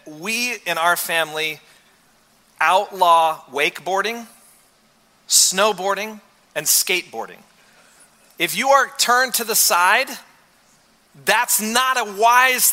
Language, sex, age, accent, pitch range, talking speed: English, male, 40-59, American, 160-245 Hz, 95 wpm